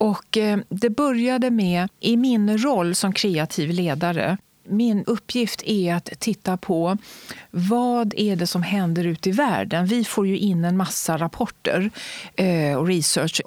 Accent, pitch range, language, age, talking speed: native, 175-215 Hz, Swedish, 40-59, 145 wpm